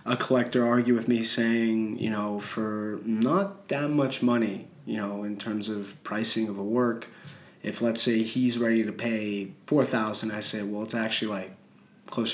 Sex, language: male, French